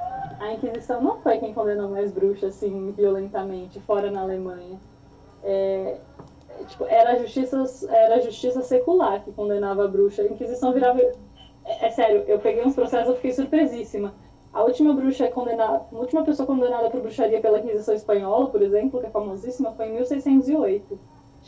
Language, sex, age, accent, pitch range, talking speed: Portuguese, female, 20-39, Brazilian, 215-275 Hz, 170 wpm